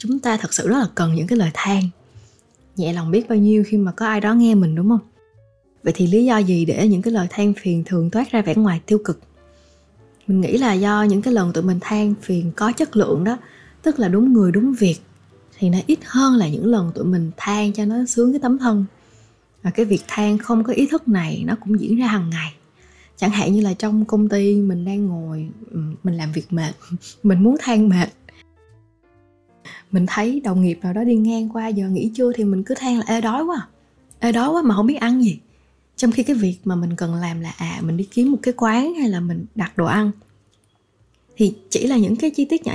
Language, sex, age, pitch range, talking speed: Vietnamese, female, 20-39, 175-230 Hz, 240 wpm